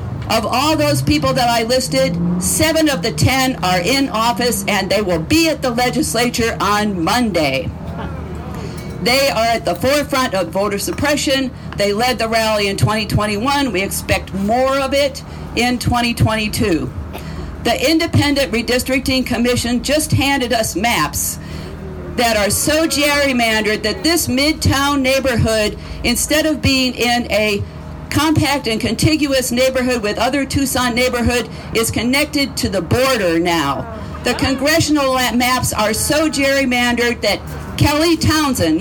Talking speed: 135 wpm